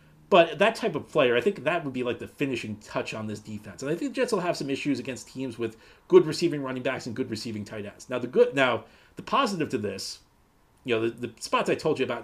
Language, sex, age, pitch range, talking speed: English, male, 40-59, 120-185 Hz, 260 wpm